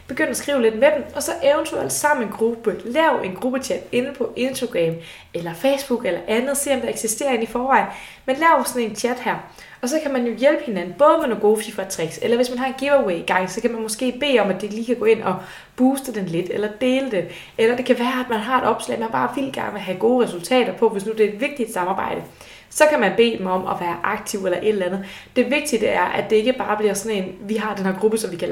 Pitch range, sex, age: 195-255 Hz, female, 20-39